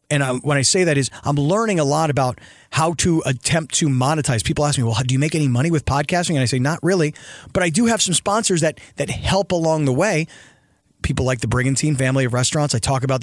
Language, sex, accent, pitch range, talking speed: English, male, American, 130-165 Hz, 250 wpm